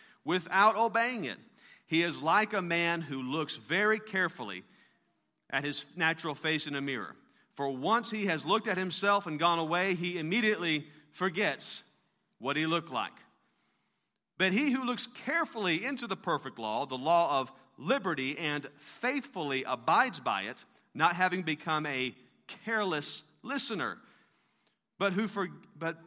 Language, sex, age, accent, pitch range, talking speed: English, male, 40-59, American, 145-200 Hz, 145 wpm